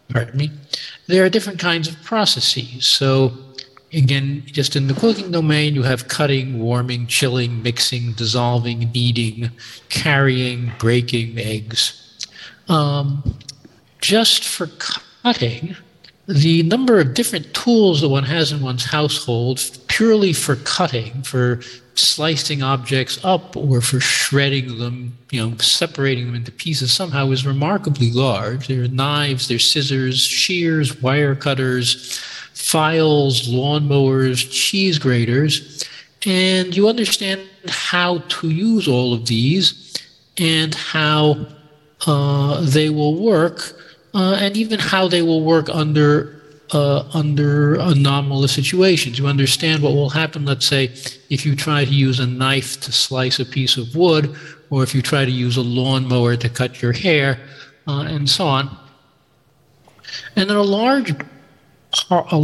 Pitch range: 130-160 Hz